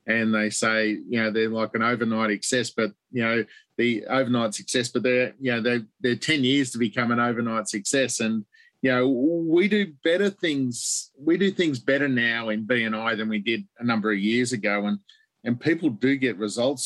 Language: English